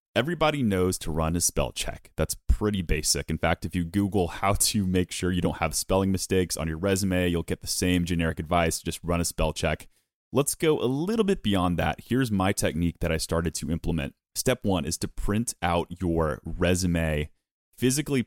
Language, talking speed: English, 205 wpm